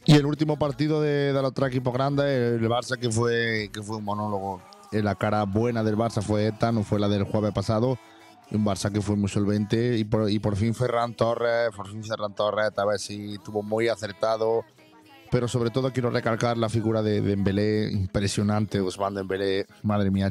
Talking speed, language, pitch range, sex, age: 200 wpm, Spanish, 100-115 Hz, male, 30-49